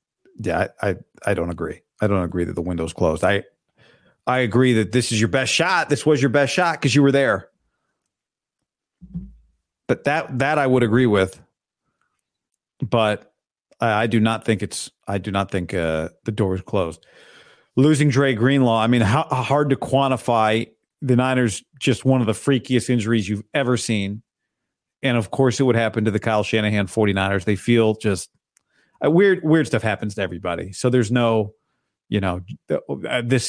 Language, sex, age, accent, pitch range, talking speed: English, male, 40-59, American, 110-140 Hz, 180 wpm